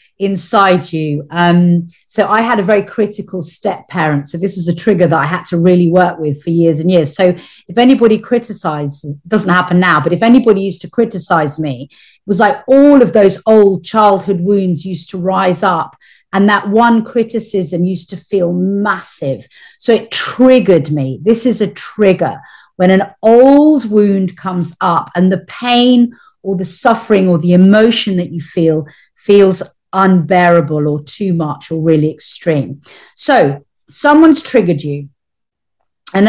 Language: English